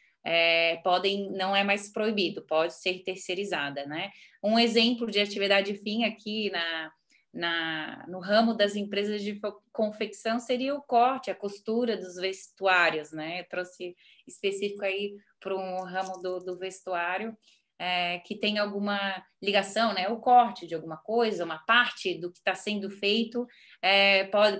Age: 20-39